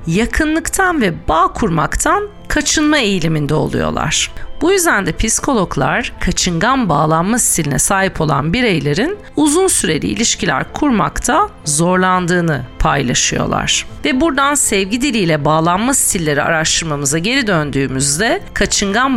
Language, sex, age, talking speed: Turkish, female, 40-59, 105 wpm